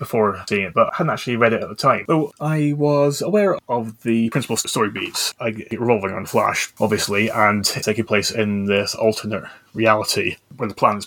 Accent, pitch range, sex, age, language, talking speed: British, 105-125 Hz, male, 20-39, English, 190 wpm